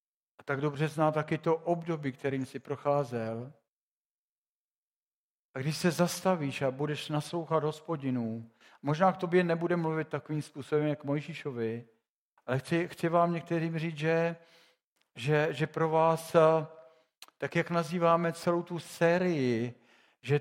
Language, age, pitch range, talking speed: Czech, 50-69, 130-160 Hz, 130 wpm